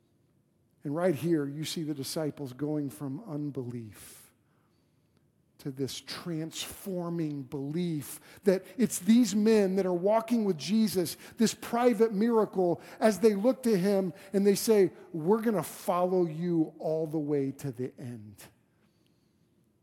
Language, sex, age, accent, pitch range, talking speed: English, male, 50-69, American, 155-225 Hz, 135 wpm